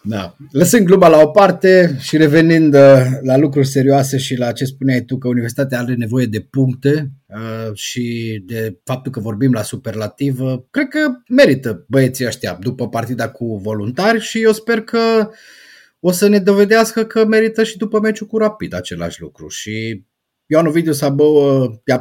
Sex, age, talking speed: male, 30-49, 160 wpm